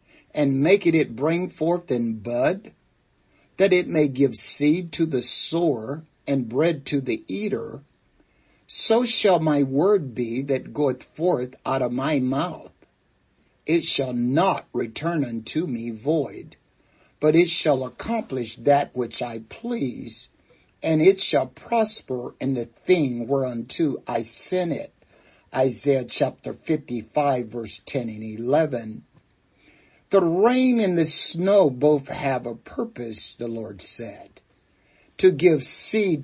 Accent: American